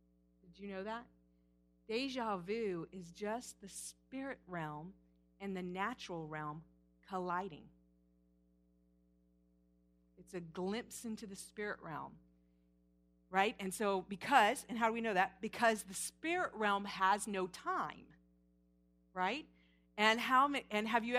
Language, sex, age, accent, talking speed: English, female, 40-59, American, 125 wpm